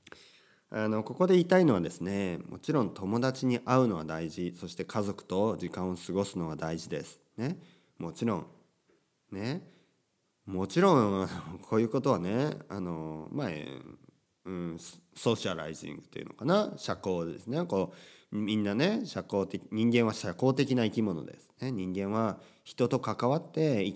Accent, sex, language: native, male, Japanese